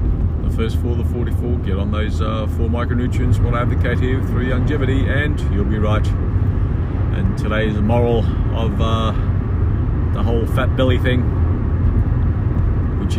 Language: English